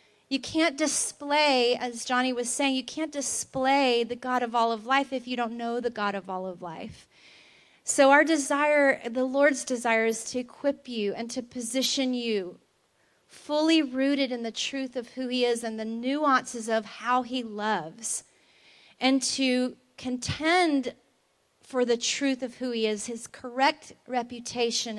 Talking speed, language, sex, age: 165 wpm, English, female, 30-49